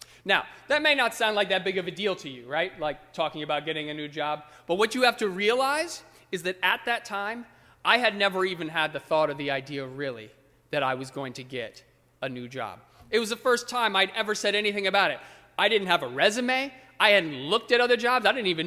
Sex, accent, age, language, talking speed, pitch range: male, American, 30-49, English, 250 wpm, 145-220 Hz